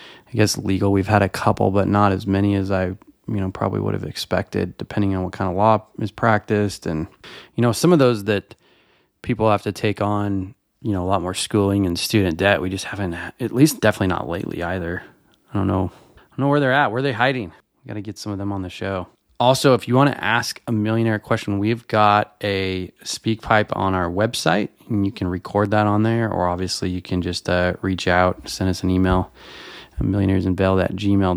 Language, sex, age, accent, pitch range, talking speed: English, male, 20-39, American, 95-115 Hz, 220 wpm